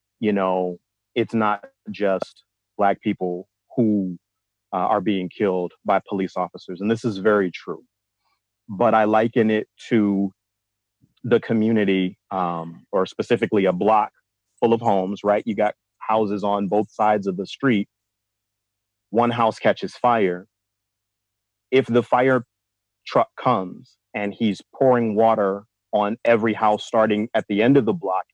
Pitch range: 100-115 Hz